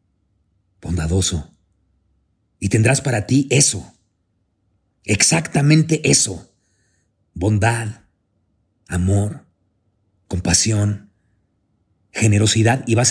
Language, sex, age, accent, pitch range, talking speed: Spanish, male, 40-59, Mexican, 100-120 Hz, 65 wpm